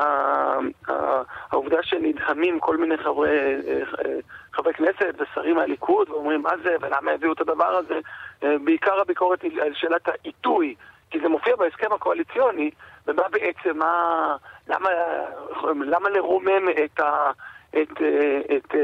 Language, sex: Hebrew, male